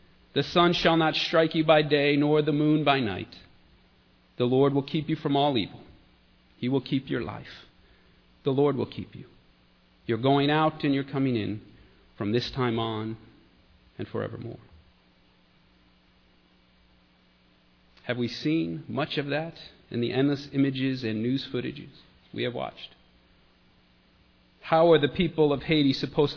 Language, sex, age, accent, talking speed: English, male, 40-59, American, 150 wpm